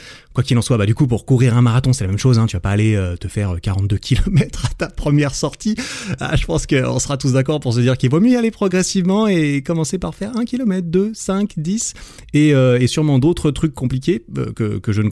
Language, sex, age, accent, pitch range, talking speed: French, male, 30-49, French, 105-135 Hz, 250 wpm